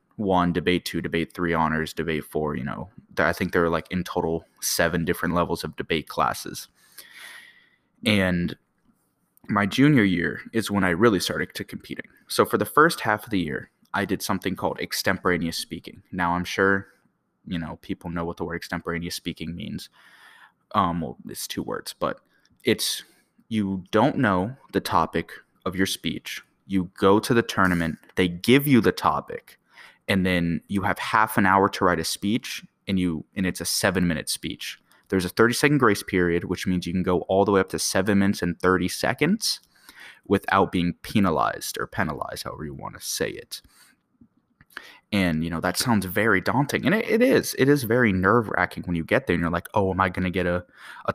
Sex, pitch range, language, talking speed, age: male, 85-105 Hz, English, 195 wpm, 20-39